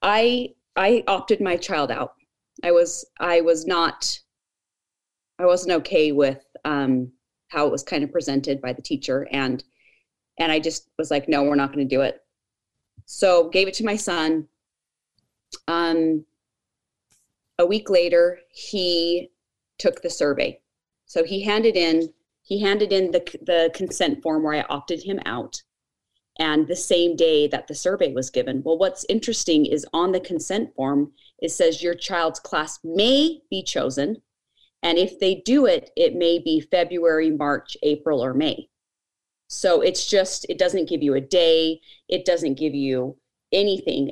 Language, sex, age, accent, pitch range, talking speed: English, female, 30-49, American, 150-190 Hz, 165 wpm